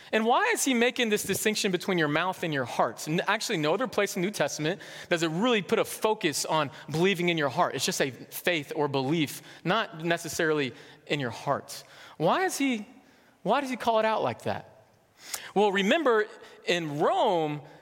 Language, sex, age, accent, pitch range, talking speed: English, male, 20-39, American, 160-235 Hz, 195 wpm